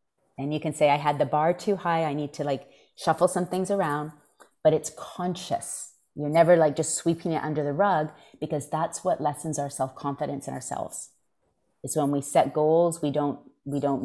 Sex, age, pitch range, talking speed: female, 30-49, 140-165 Hz, 200 wpm